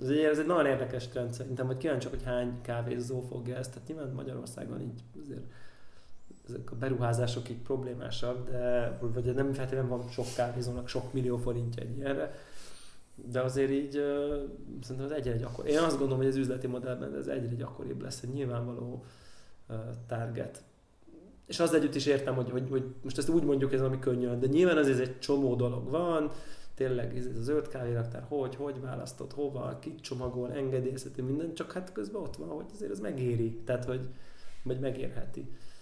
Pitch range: 125-140 Hz